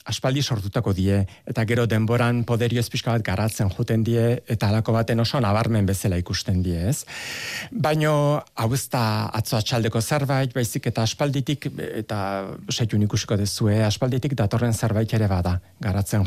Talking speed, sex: 150 wpm, male